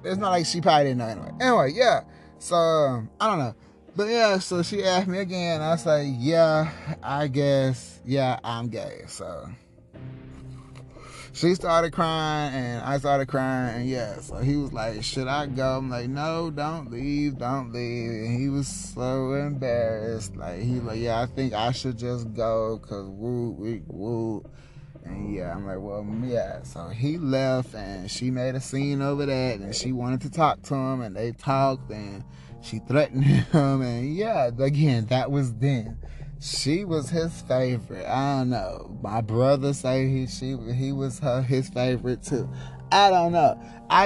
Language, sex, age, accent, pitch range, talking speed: English, male, 30-49, American, 120-155 Hz, 180 wpm